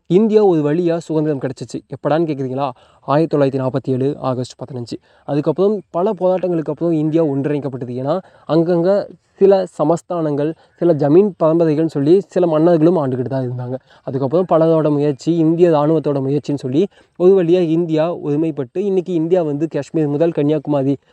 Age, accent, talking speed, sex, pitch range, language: 20-39, native, 140 wpm, male, 145-180 Hz, Tamil